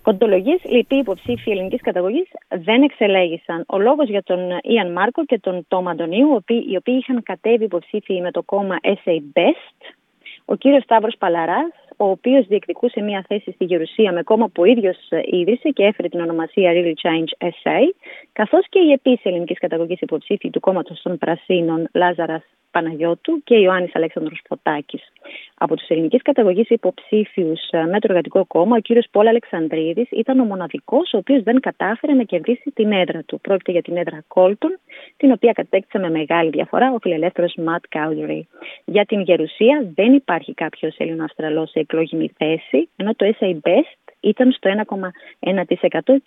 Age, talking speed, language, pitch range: 30-49, 165 wpm, Greek, 170-235 Hz